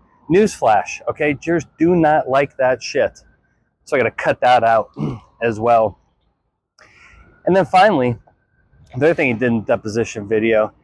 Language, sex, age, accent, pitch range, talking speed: English, male, 30-49, American, 125-170 Hz, 160 wpm